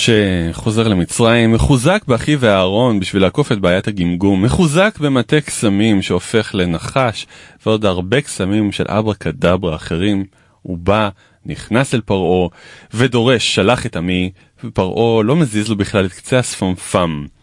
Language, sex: Hebrew, male